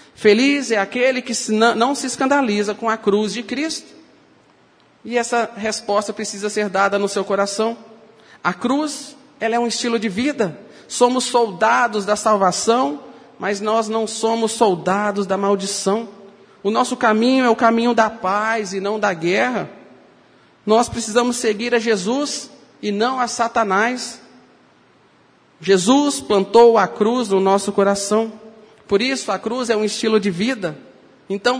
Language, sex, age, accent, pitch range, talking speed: Portuguese, male, 40-59, Brazilian, 205-240 Hz, 150 wpm